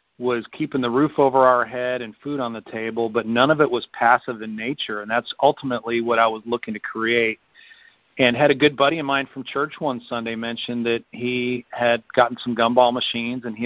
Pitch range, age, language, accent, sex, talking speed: 115-130 Hz, 40-59, English, American, male, 220 wpm